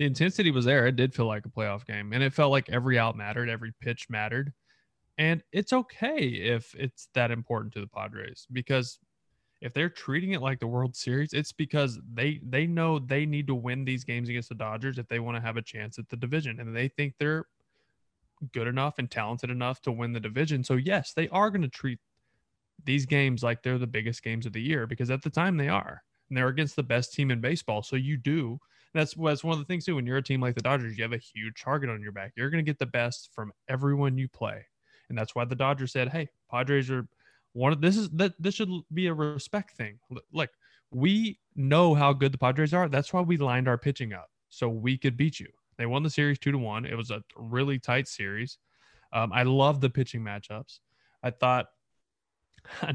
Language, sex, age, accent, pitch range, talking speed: English, male, 20-39, American, 120-145 Hz, 230 wpm